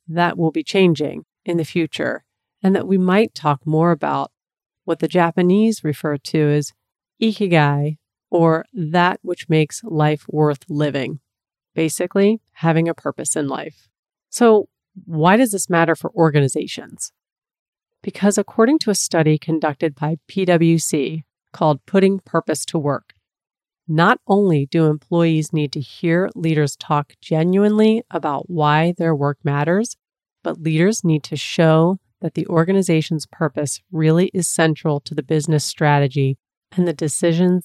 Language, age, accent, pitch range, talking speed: English, 40-59, American, 150-180 Hz, 140 wpm